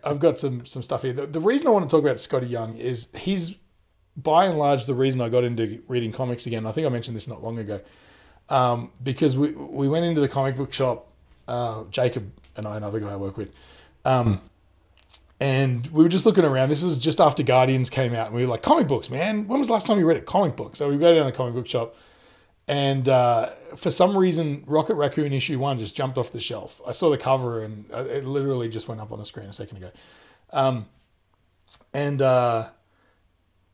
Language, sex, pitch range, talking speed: English, male, 115-145 Hz, 230 wpm